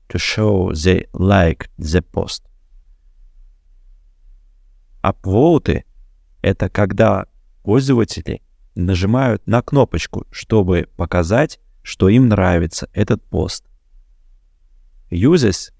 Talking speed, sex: 80 wpm, male